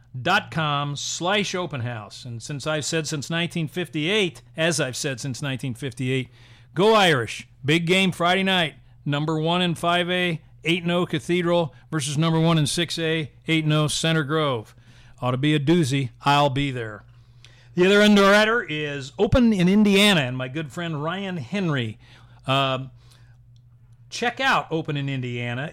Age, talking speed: 40-59, 150 wpm